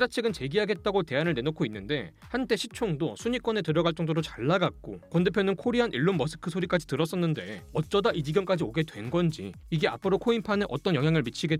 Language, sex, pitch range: Korean, male, 155-220 Hz